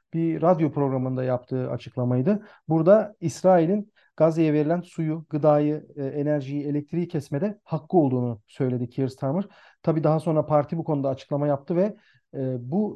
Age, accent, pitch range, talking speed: 40-59, native, 135-175 Hz, 135 wpm